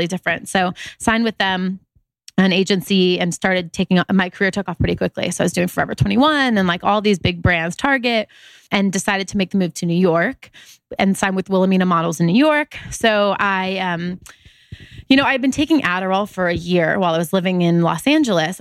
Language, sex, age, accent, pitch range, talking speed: English, female, 20-39, American, 180-210 Hz, 215 wpm